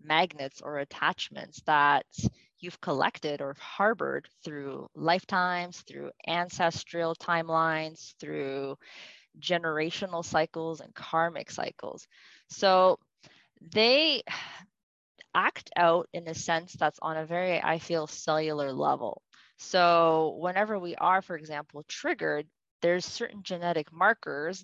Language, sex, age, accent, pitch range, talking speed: English, female, 20-39, American, 155-180 Hz, 110 wpm